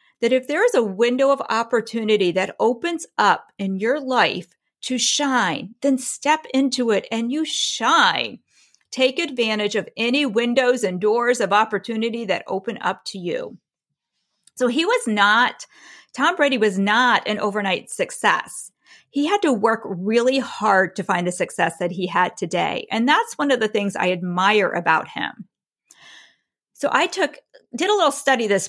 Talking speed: 165 wpm